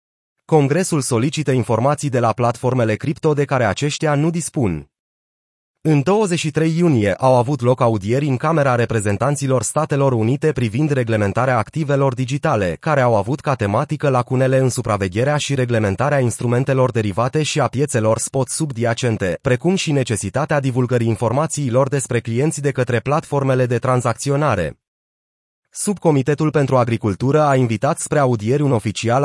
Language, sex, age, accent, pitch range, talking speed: Romanian, male, 30-49, native, 120-150 Hz, 135 wpm